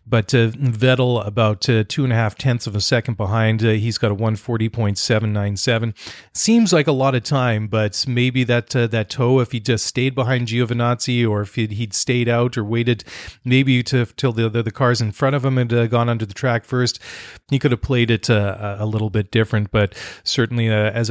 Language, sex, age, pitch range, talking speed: English, male, 30-49, 110-125 Hz, 220 wpm